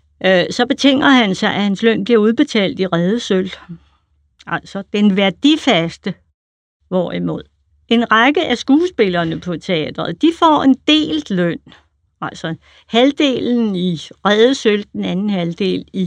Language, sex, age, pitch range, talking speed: Danish, female, 60-79, 170-220 Hz, 125 wpm